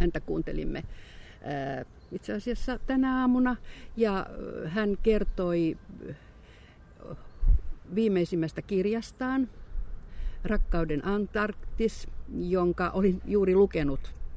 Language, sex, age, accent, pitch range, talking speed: Finnish, female, 50-69, native, 155-190 Hz, 70 wpm